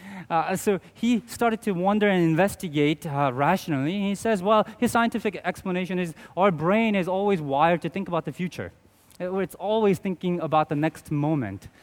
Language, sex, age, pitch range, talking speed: English, male, 30-49, 140-190 Hz, 180 wpm